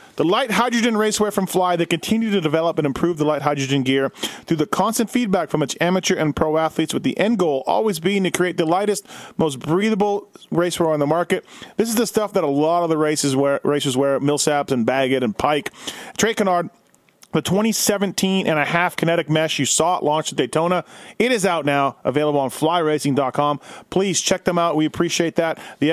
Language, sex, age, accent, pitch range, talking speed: English, male, 40-59, American, 145-185 Hz, 205 wpm